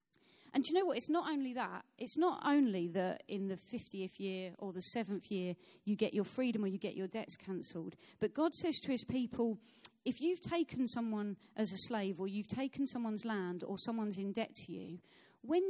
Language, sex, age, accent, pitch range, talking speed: English, female, 40-59, British, 195-250 Hz, 215 wpm